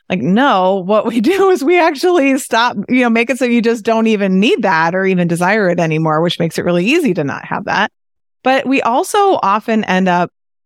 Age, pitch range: 30-49, 165-215 Hz